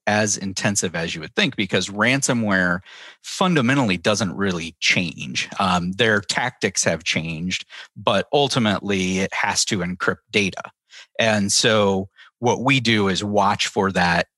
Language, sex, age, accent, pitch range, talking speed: English, male, 40-59, American, 90-110 Hz, 140 wpm